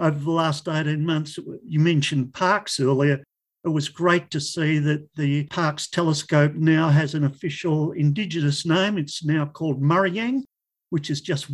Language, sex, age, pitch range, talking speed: English, male, 50-69, 150-195 Hz, 160 wpm